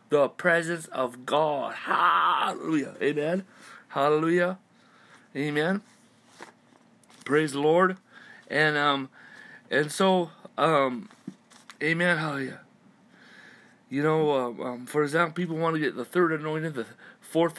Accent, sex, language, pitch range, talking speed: American, male, English, 135-190 Hz, 110 wpm